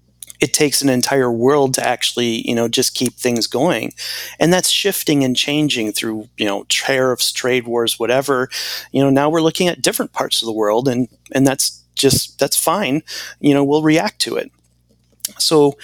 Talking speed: 185 wpm